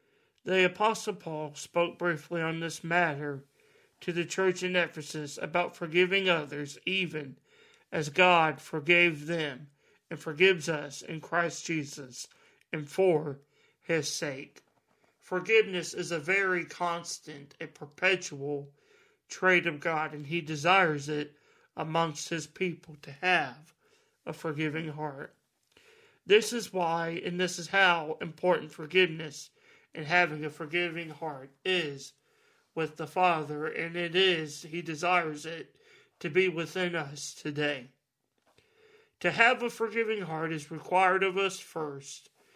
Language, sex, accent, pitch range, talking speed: English, male, American, 155-185 Hz, 130 wpm